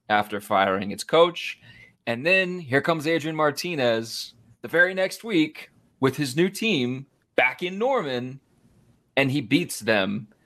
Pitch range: 115-155 Hz